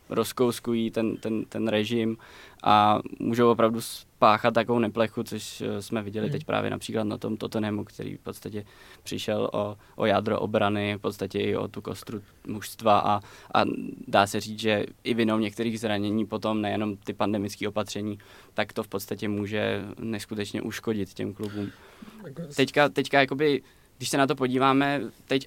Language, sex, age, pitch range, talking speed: Czech, male, 20-39, 105-120 Hz, 160 wpm